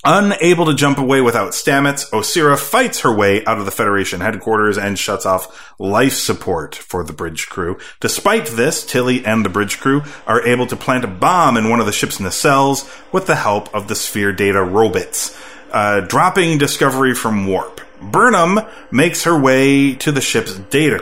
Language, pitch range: English, 105-145 Hz